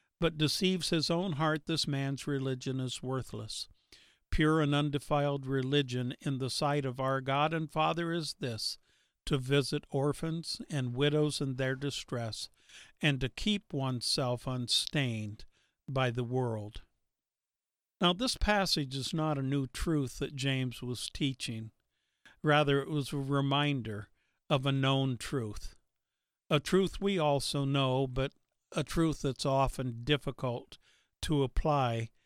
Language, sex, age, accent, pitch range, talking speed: English, male, 50-69, American, 125-155 Hz, 140 wpm